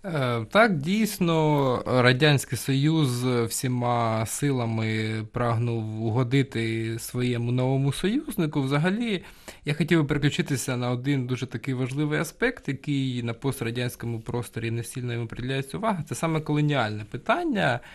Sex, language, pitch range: male, Ukrainian, 120-145 Hz